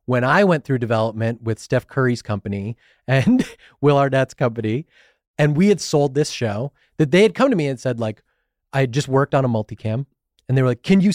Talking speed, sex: 220 wpm, male